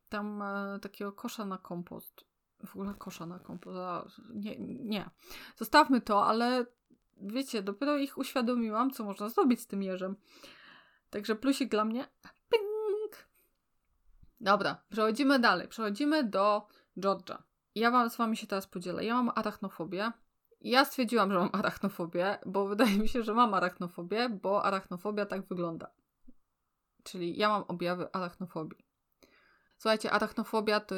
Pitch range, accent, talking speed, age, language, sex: 180-215 Hz, native, 135 wpm, 20-39, Polish, female